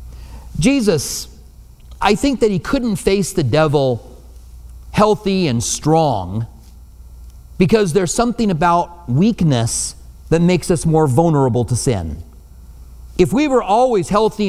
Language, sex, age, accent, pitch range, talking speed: English, male, 40-59, American, 120-195 Hz, 120 wpm